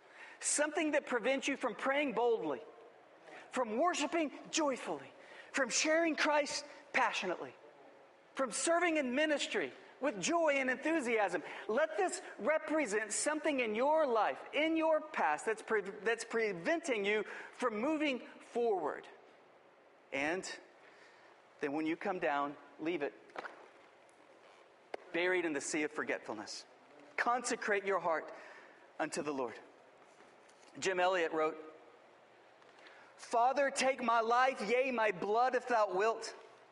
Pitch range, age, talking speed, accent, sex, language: 195-280 Hz, 40-59, 120 wpm, American, male, English